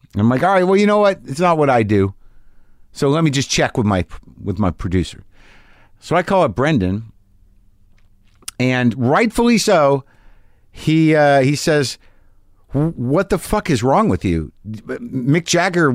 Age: 50-69